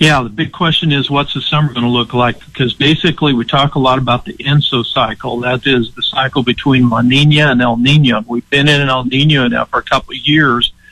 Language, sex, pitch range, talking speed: English, male, 125-150 Hz, 240 wpm